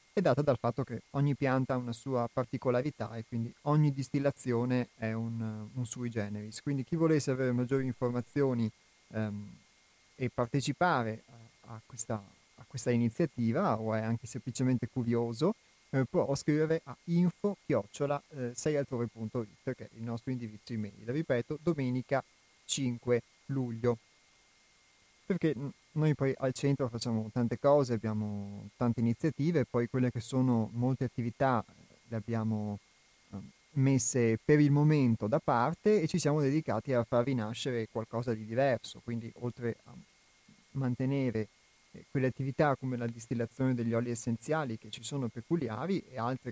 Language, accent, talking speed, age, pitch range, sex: Italian, native, 140 wpm, 30-49, 115-135 Hz, male